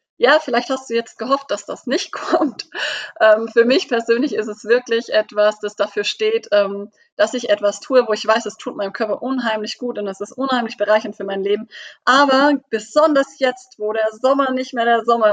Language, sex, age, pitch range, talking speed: German, female, 30-49, 210-255 Hz, 210 wpm